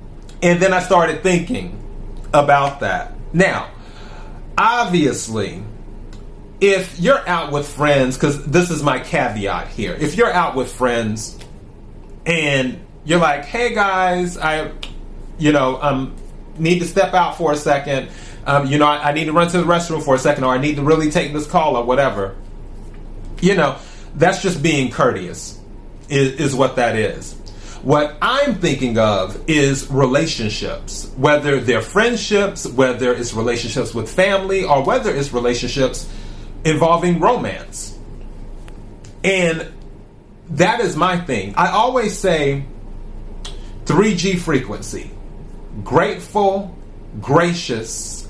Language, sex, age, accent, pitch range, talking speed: English, male, 30-49, American, 115-175 Hz, 135 wpm